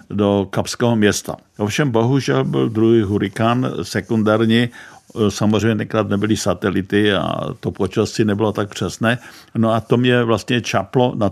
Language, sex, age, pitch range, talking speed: Czech, male, 50-69, 105-115 Hz, 140 wpm